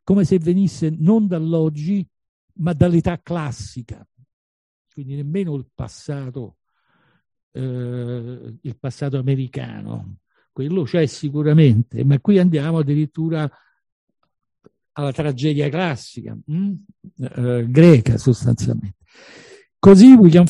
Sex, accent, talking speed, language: male, native, 95 wpm, Italian